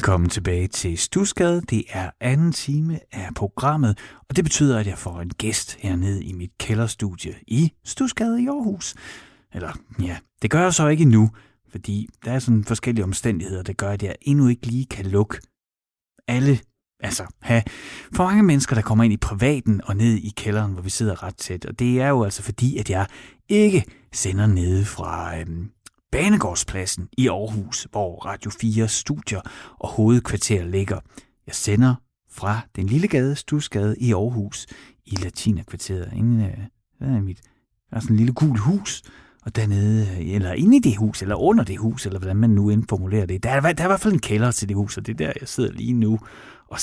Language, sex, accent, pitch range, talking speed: Danish, male, native, 95-130 Hz, 185 wpm